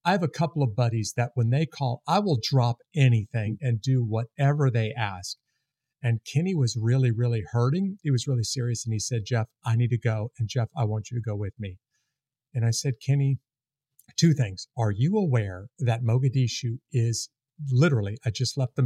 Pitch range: 115-140 Hz